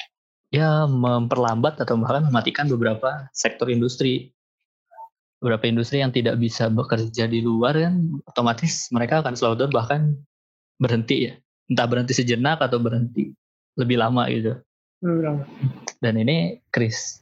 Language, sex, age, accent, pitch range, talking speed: Indonesian, male, 20-39, native, 115-140 Hz, 120 wpm